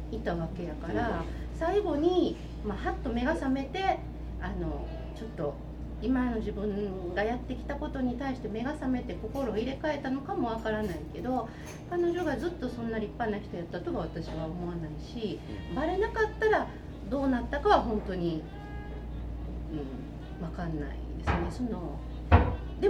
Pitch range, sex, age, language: 210-340 Hz, female, 40-59, Japanese